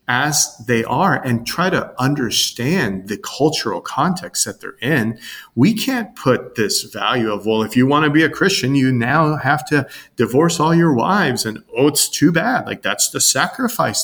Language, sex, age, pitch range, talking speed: English, male, 30-49, 110-155 Hz, 190 wpm